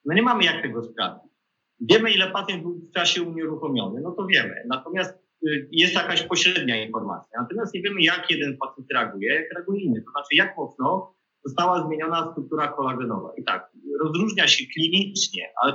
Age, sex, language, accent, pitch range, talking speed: 30-49, male, Polish, native, 145-175 Hz, 170 wpm